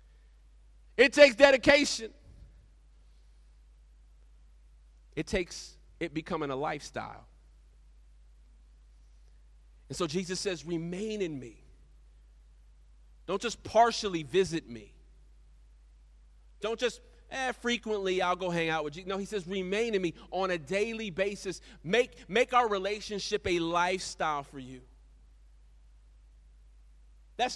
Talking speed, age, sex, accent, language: 110 wpm, 40-59, male, American, English